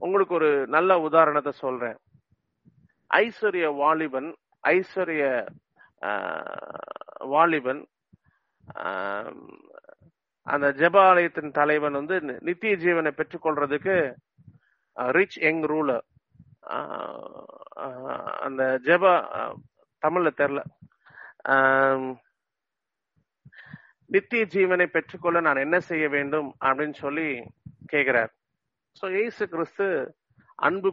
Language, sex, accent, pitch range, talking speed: English, male, Indian, 140-175 Hz, 60 wpm